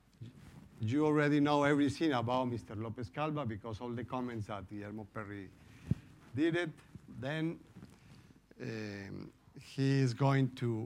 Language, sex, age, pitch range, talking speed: English, male, 50-69, 110-145 Hz, 125 wpm